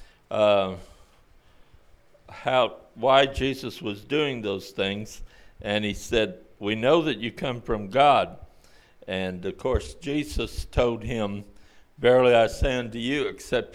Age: 60-79